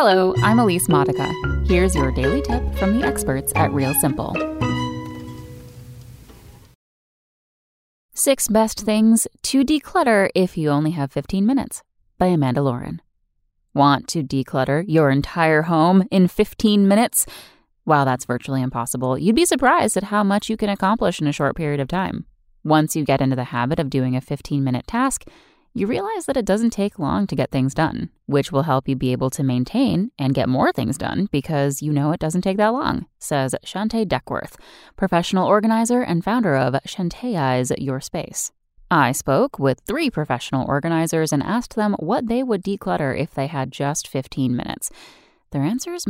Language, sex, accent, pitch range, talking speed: English, female, American, 135-215 Hz, 170 wpm